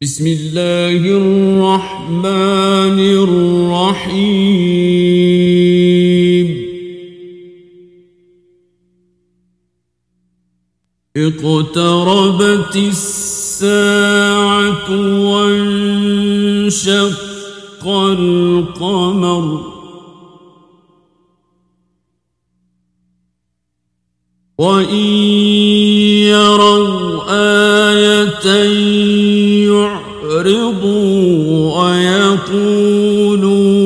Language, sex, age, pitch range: Persian, male, 50-69, 170-205 Hz